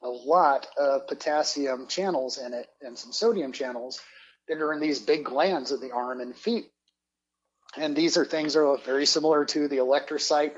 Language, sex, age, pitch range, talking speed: English, male, 30-49, 130-155 Hz, 185 wpm